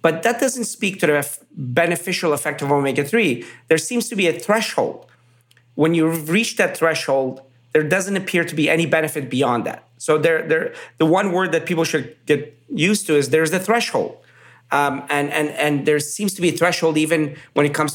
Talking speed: 190 wpm